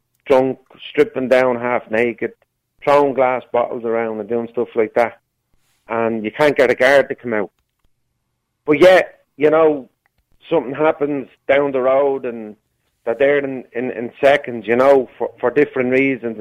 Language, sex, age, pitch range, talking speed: English, male, 30-49, 120-145 Hz, 160 wpm